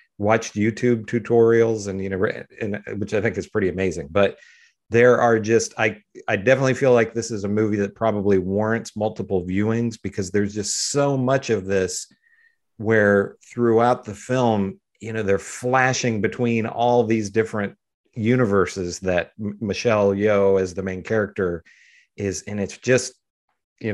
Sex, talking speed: male, 155 wpm